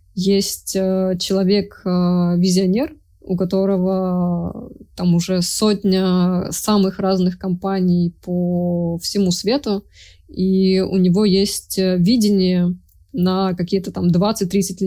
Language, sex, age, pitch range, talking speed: Russian, female, 20-39, 180-200 Hz, 90 wpm